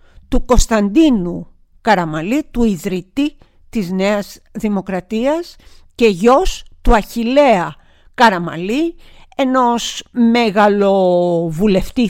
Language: Greek